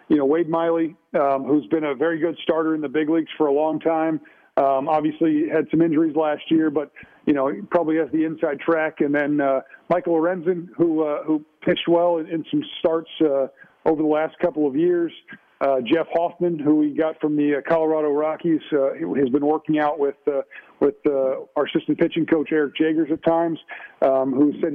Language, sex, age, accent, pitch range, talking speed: English, male, 50-69, American, 145-165 Hz, 210 wpm